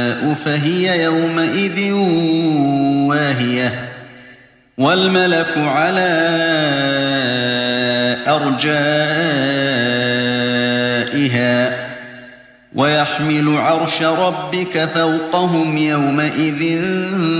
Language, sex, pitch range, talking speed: Arabic, male, 140-165 Hz, 40 wpm